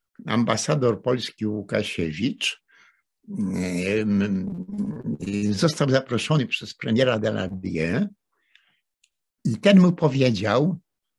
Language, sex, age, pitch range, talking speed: Polish, male, 60-79, 115-160 Hz, 75 wpm